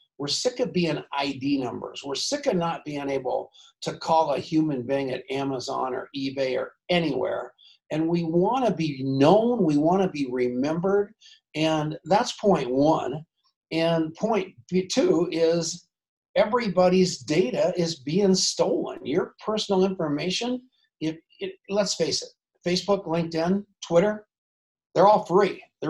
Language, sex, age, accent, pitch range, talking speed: English, male, 50-69, American, 140-195 Hz, 140 wpm